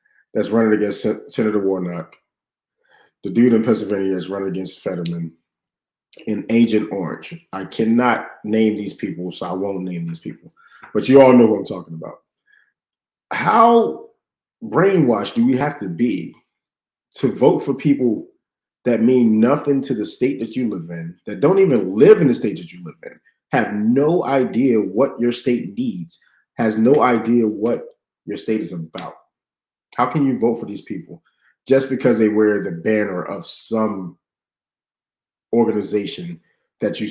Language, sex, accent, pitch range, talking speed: English, male, American, 105-165 Hz, 160 wpm